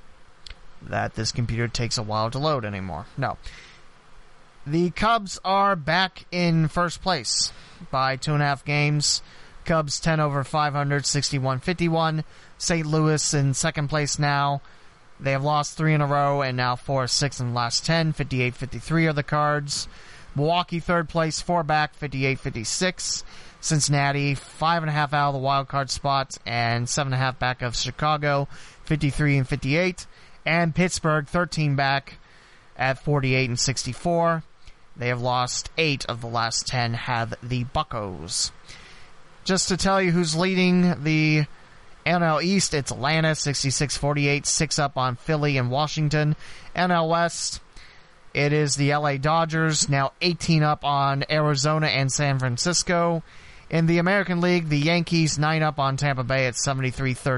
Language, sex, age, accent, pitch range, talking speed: English, male, 30-49, American, 135-160 Hz, 150 wpm